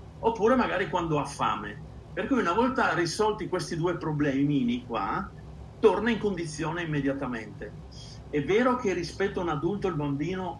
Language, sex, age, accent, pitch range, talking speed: Italian, male, 50-69, native, 140-190 Hz, 155 wpm